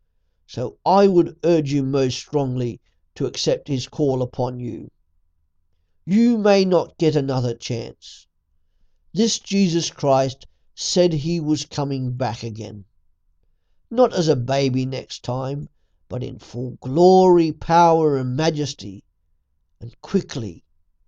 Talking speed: 120 wpm